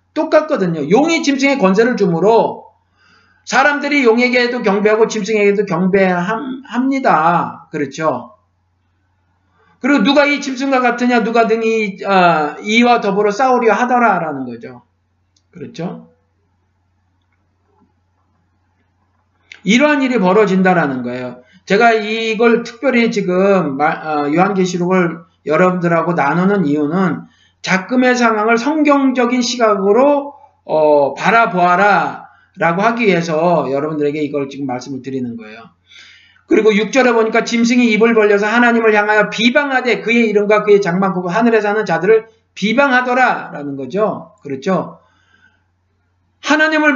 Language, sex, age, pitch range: Korean, male, 50-69, 150-240 Hz